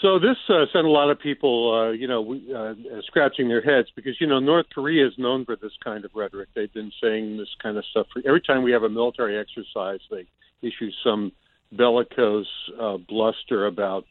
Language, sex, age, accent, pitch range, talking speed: English, male, 50-69, American, 110-145 Hz, 205 wpm